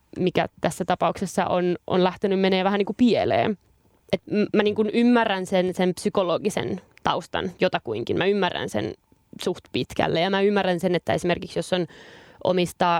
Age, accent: 20-39, native